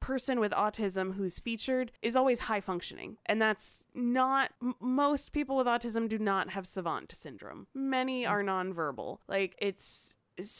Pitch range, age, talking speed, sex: 175-215 Hz, 20-39, 145 wpm, female